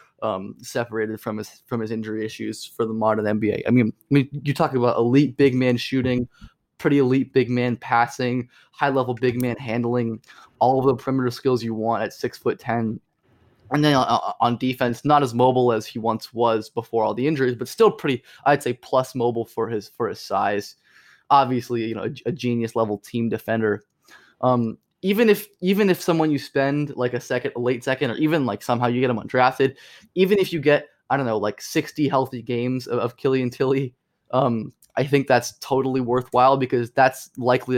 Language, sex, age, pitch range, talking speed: English, male, 20-39, 115-135 Hz, 200 wpm